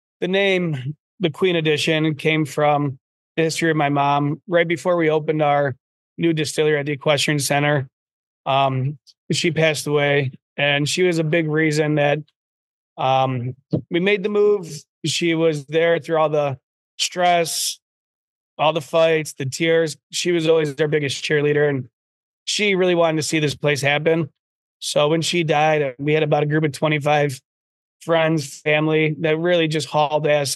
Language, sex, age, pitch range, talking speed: English, male, 20-39, 145-160 Hz, 165 wpm